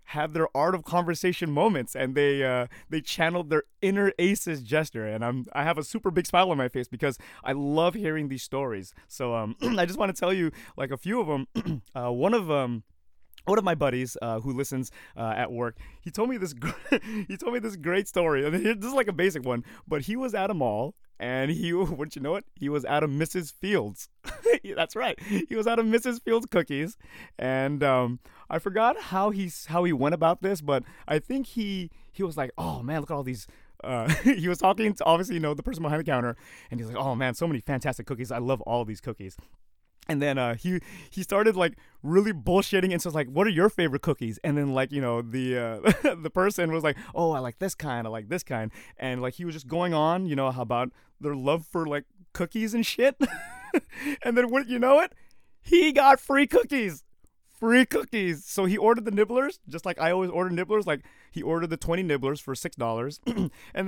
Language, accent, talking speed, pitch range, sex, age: English, American, 230 wpm, 130-195 Hz, male, 30-49